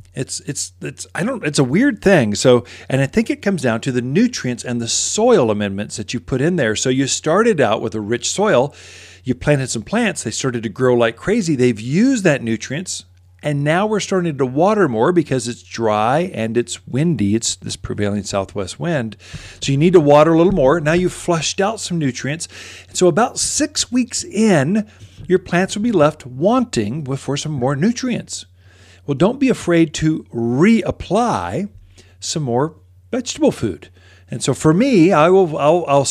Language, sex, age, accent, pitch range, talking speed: English, male, 40-59, American, 105-170 Hz, 190 wpm